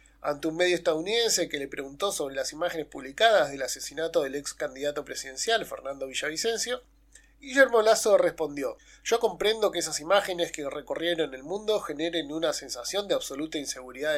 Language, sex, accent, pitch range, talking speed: Spanish, male, Argentinian, 150-210 Hz, 155 wpm